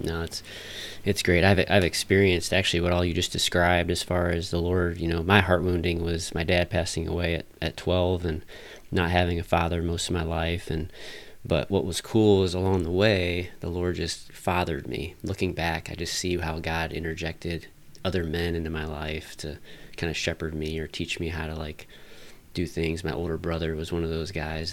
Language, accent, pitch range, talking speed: English, American, 80-90 Hz, 215 wpm